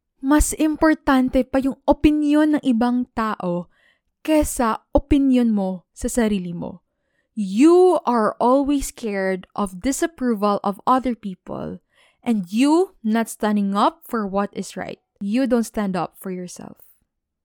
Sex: female